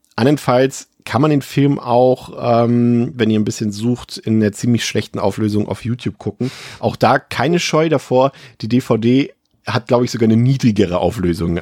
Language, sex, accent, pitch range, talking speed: German, male, German, 95-125 Hz, 175 wpm